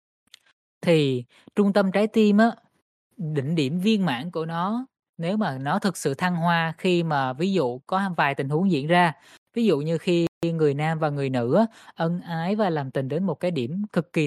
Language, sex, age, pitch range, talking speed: Vietnamese, female, 10-29, 145-190 Hz, 200 wpm